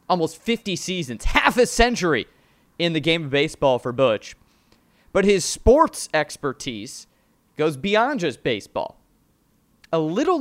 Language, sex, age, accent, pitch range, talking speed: English, male, 30-49, American, 125-170 Hz, 135 wpm